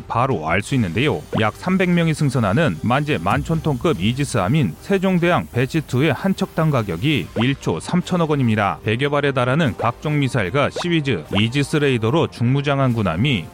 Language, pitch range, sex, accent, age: Korean, 115-160 Hz, male, native, 30-49